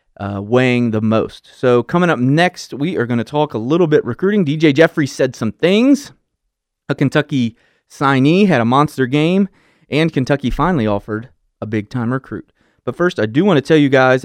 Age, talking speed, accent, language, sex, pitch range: 30-49, 195 wpm, American, English, male, 120-160 Hz